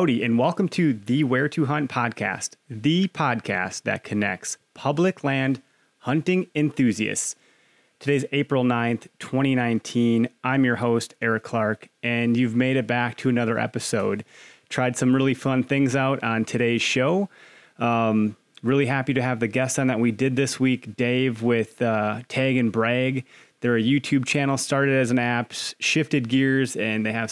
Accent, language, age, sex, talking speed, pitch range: American, English, 30-49, male, 165 wpm, 115-135 Hz